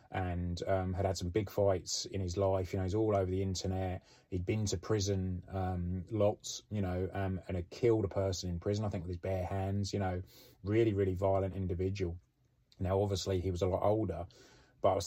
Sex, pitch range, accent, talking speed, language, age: male, 90-100 Hz, British, 225 wpm, English, 20-39